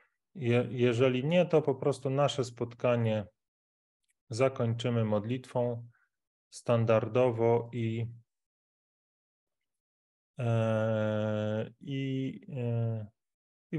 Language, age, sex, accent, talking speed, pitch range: Polish, 30-49, male, native, 55 wpm, 110-125 Hz